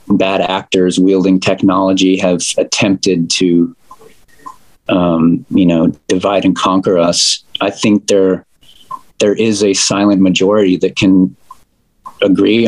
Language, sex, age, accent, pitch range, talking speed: English, male, 30-49, American, 90-100 Hz, 120 wpm